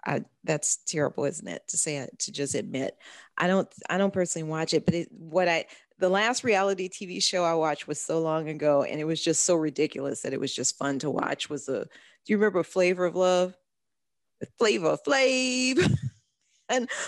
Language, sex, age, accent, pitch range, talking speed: English, female, 40-59, American, 150-185 Hz, 210 wpm